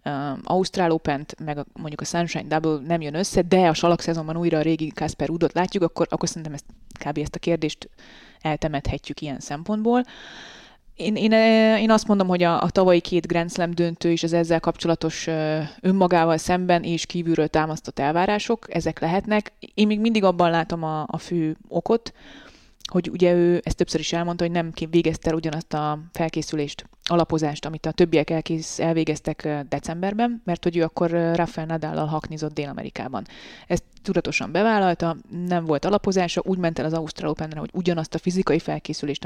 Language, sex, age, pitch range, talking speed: Hungarian, female, 20-39, 155-180 Hz, 170 wpm